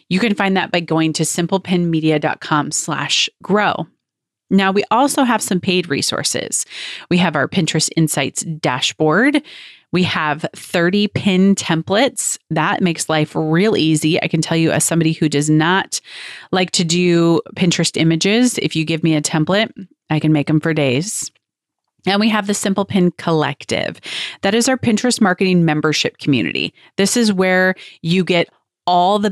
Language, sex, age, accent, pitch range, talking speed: English, female, 30-49, American, 160-205 Hz, 160 wpm